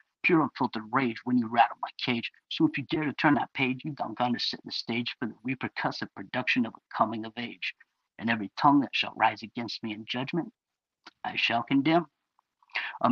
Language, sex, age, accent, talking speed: English, male, 50-69, American, 205 wpm